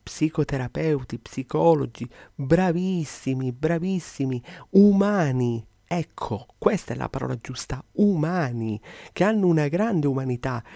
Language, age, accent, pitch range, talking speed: Italian, 30-49, native, 125-160 Hz, 95 wpm